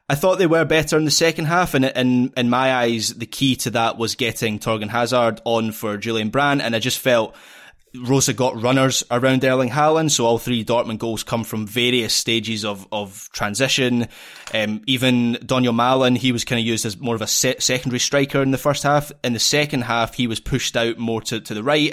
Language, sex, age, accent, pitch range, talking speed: English, male, 20-39, British, 115-135 Hz, 220 wpm